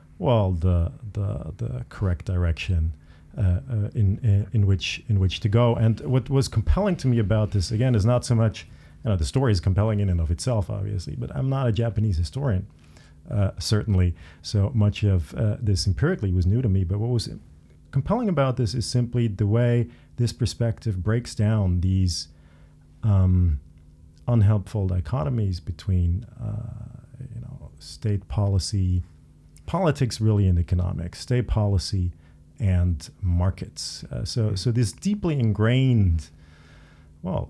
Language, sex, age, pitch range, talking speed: English, male, 40-59, 90-115 Hz, 155 wpm